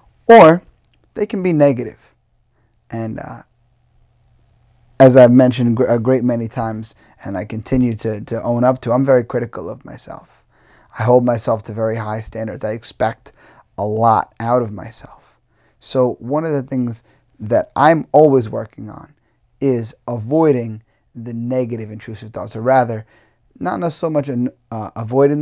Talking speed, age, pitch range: 150 wpm, 30-49, 115-135 Hz